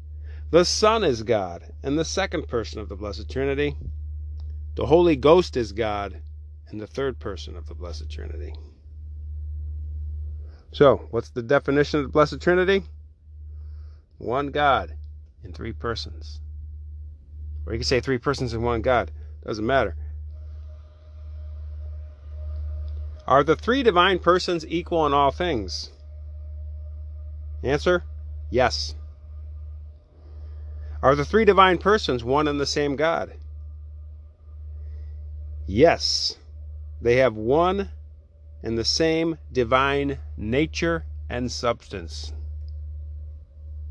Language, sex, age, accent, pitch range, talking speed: English, male, 40-59, American, 75-120 Hz, 110 wpm